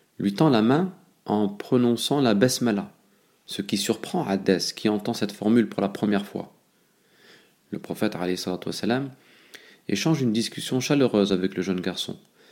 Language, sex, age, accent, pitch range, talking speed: French, male, 40-59, French, 100-120 Hz, 150 wpm